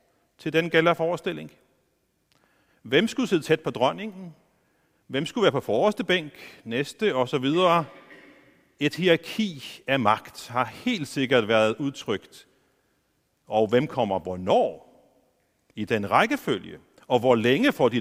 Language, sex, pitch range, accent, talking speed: Danish, male, 120-170 Hz, native, 130 wpm